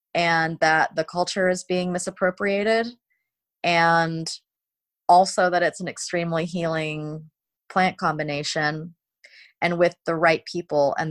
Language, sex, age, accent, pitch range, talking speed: English, female, 20-39, American, 155-180 Hz, 120 wpm